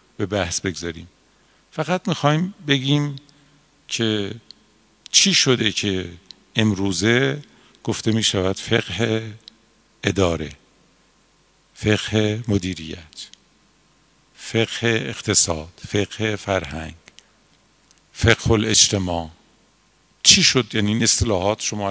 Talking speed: 80 wpm